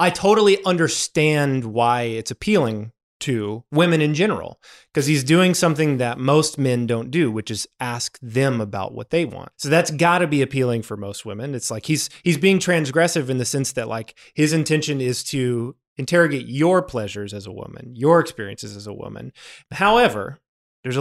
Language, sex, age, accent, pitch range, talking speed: English, male, 20-39, American, 125-180 Hz, 185 wpm